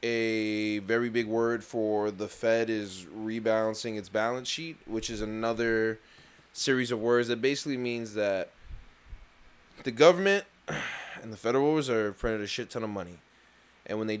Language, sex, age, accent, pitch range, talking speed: English, male, 20-39, American, 105-120 Hz, 155 wpm